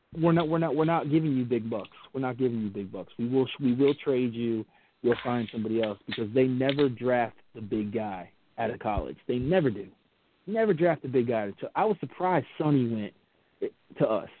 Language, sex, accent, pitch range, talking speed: English, male, American, 115-140 Hz, 215 wpm